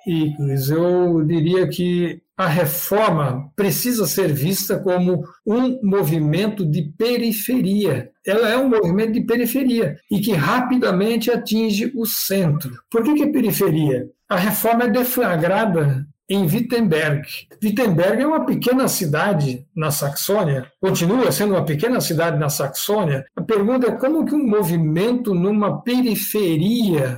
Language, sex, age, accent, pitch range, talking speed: Portuguese, male, 60-79, Brazilian, 155-215 Hz, 135 wpm